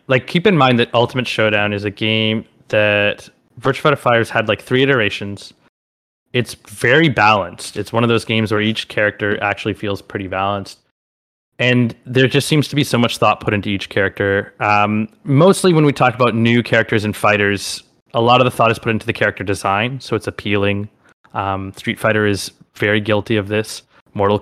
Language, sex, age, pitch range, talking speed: English, male, 20-39, 105-125 Hz, 195 wpm